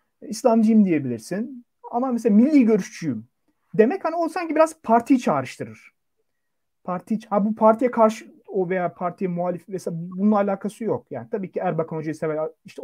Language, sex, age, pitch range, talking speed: Turkish, male, 40-59, 140-230 Hz, 150 wpm